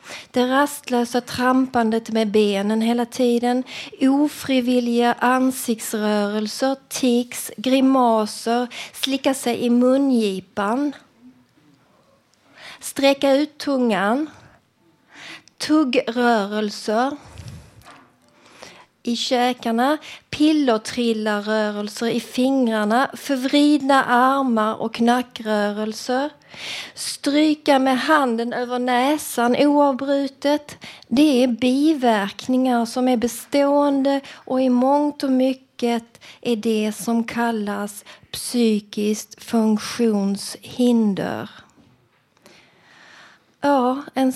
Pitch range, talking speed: 225-270 Hz, 75 wpm